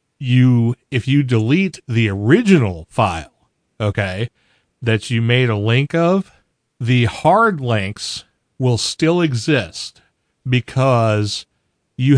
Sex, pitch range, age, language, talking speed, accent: male, 105-135 Hz, 40-59, English, 110 wpm, American